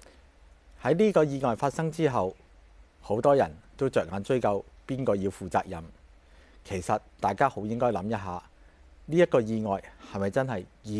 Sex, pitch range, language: male, 80-120 Hz, Chinese